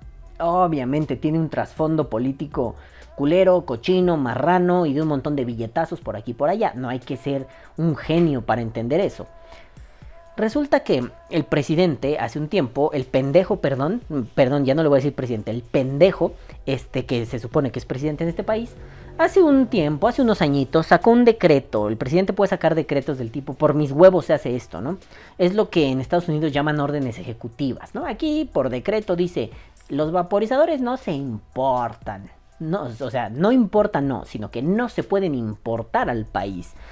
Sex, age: female, 30-49